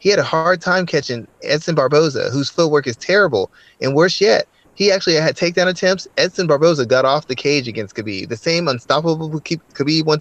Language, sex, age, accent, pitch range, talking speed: English, male, 30-49, American, 115-155 Hz, 200 wpm